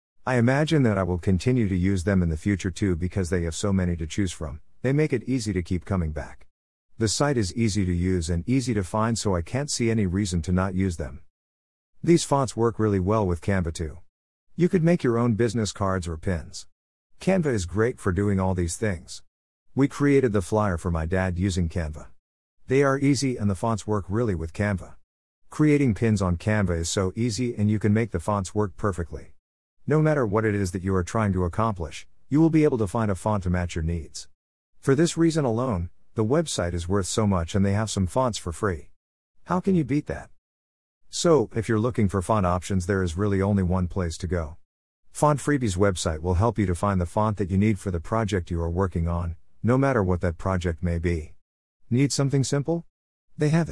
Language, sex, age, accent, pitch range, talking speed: English, male, 50-69, American, 85-115 Hz, 225 wpm